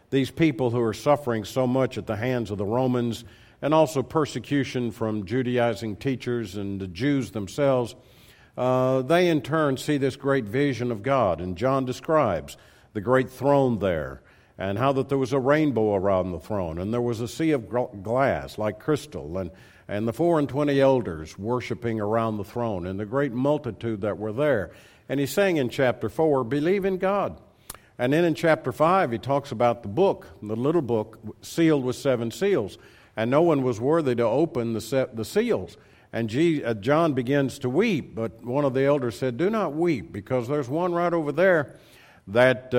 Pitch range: 115-145 Hz